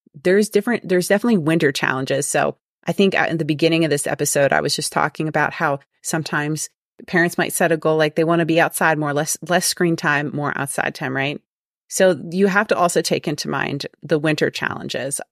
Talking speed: 210 wpm